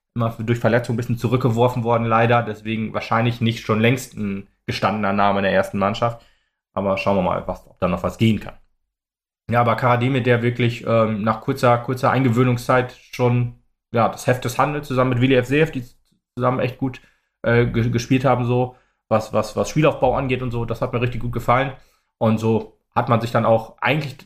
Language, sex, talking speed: German, male, 200 wpm